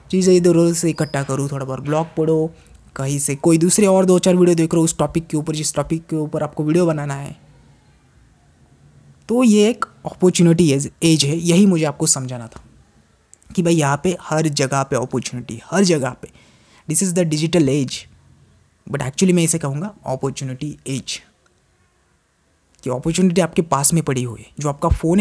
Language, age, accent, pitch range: Hindi, 20-39, native, 135-185 Hz